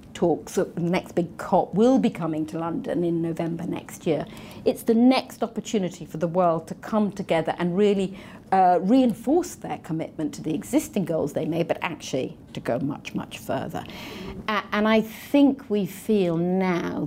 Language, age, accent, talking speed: English, 40-59, British, 185 wpm